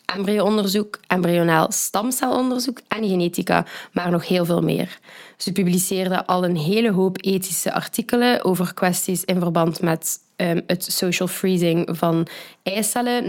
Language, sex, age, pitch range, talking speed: Dutch, female, 20-39, 175-210 Hz, 130 wpm